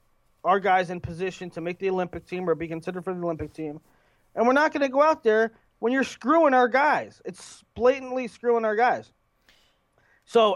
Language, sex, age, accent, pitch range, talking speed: English, male, 30-49, American, 155-235 Hz, 200 wpm